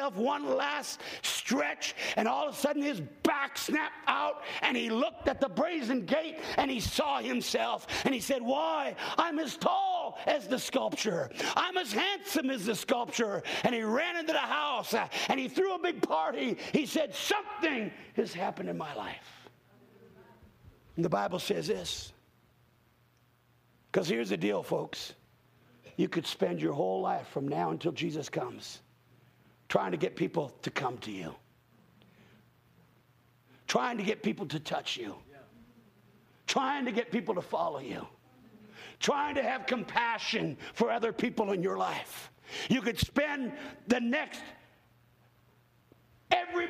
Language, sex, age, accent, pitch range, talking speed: English, male, 50-69, American, 205-295 Hz, 150 wpm